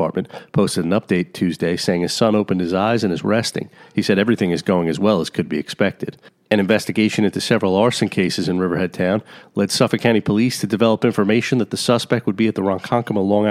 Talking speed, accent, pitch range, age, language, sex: 220 wpm, American, 90-110 Hz, 40-59, English, male